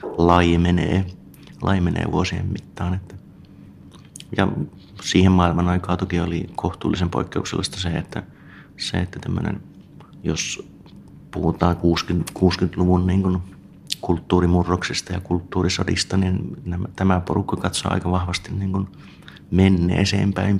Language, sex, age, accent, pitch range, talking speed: Finnish, male, 30-49, native, 85-95 Hz, 100 wpm